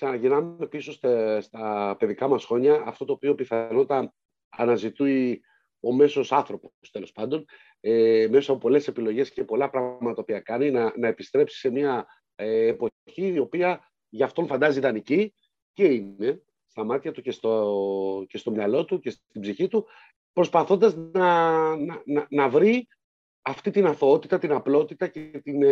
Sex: male